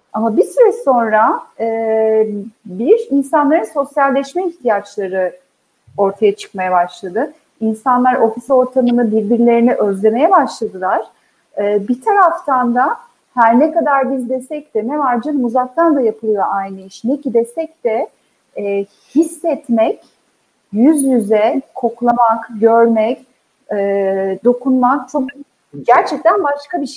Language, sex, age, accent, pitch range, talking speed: Turkish, female, 40-59, native, 220-280 Hz, 105 wpm